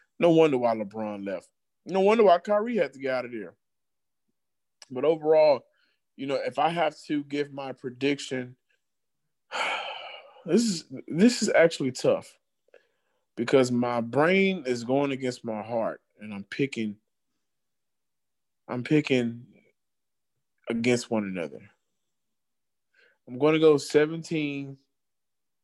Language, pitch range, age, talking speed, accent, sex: English, 120-145 Hz, 20-39, 120 wpm, American, male